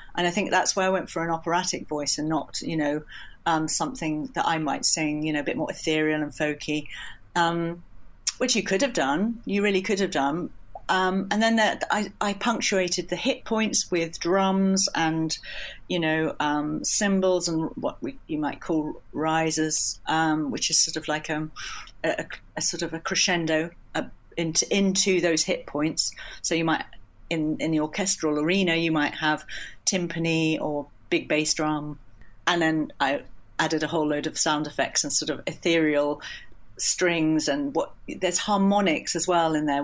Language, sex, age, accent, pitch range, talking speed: English, female, 40-59, British, 155-195 Hz, 185 wpm